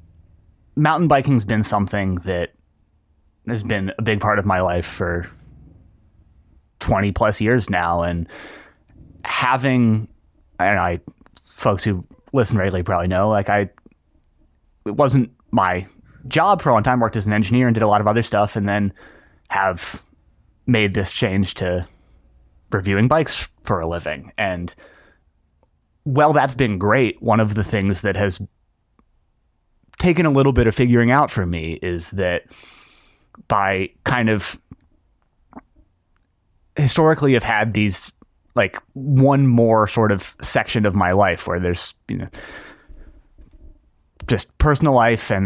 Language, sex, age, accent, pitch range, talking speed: English, male, 20-39, American, 85-115 Hz, 145 wpm